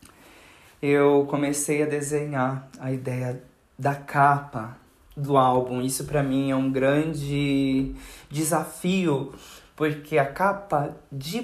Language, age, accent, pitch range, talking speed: Portuguese, 20-39, Brazilian, 135-165 Hz, 110 wpm